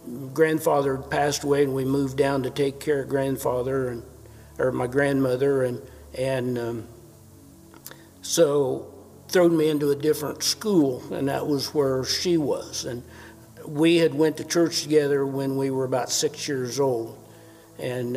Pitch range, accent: 125-145 Hz, American